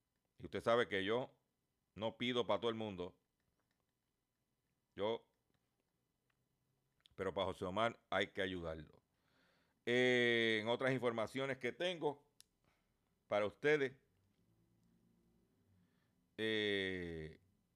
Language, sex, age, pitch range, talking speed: Spanish, male, 50-69, 95-135 Hz, 90 wpm